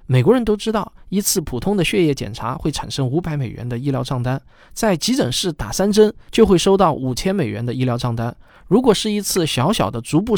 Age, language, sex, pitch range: 20-39, Chinese, male, 125-195 Hz